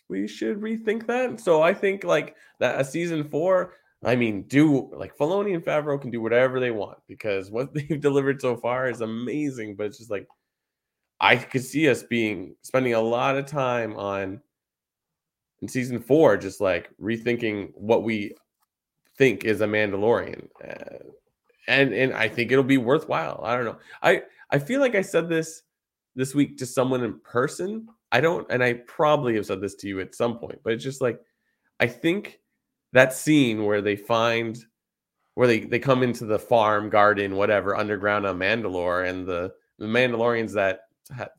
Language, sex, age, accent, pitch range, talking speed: English, male, 20-39, American, 105-145 Hz, 180 wpm